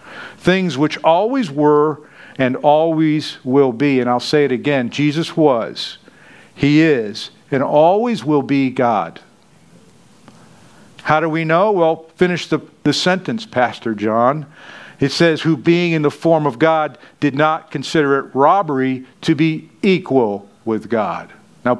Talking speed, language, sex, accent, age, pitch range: 145 wpm, English, male, American, 50-69, 145-195 Hz